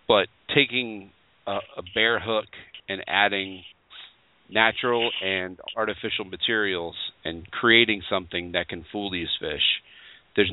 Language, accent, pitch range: English, American, 90-115 Hz